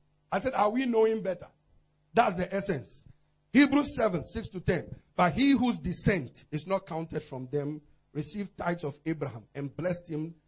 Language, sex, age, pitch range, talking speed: English, male, 50-69, 150-245 Hz, 165 wpm